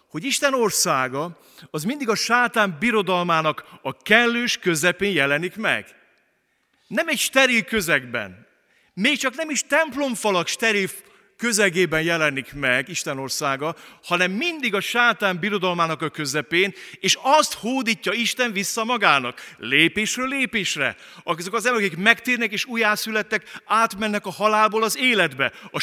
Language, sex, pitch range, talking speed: Hungarian, male, 150-230 Hz, 130 wpm